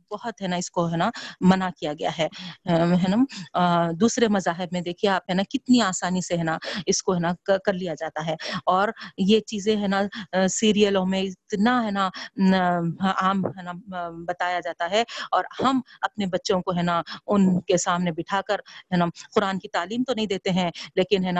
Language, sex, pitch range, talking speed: Urdu, female, 175-210 Hz, 200 wpm